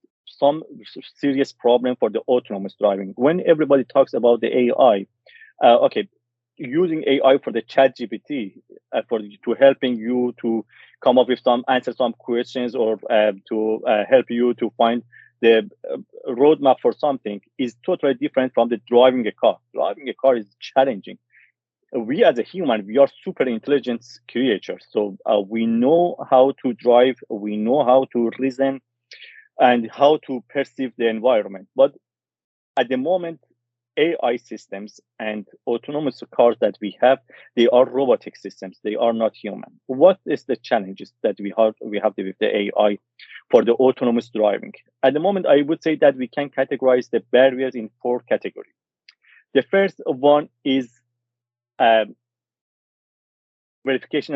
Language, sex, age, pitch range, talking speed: English, male, 40-59, 115-135 Hz, 155 wpm